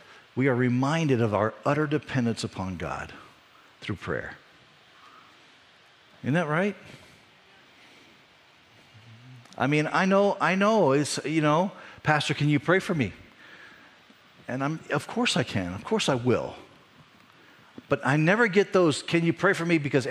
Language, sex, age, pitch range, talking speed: English, male, 50-69, 125-170 Hz, 150 wpm